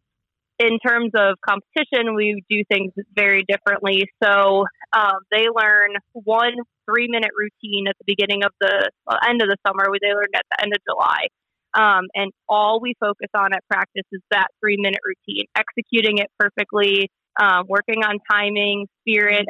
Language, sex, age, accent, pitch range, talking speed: English, female, 20-39, American, 200-220 Hz, 165 wpm